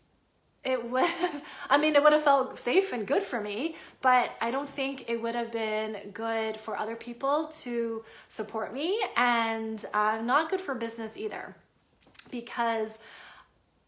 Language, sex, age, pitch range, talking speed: English, female, 20-39, 210-245 Hz, 155 wpm